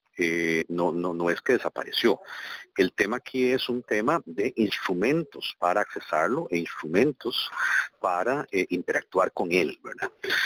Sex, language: male, Spanish